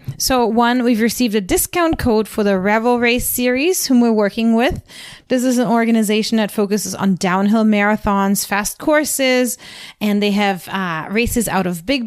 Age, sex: 30-49, female